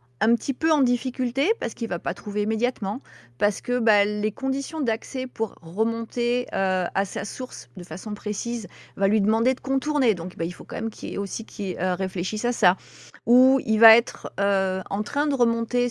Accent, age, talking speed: French, 30-49, 200 wpm